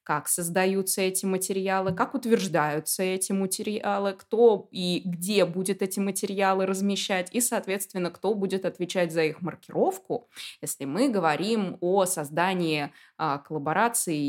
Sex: female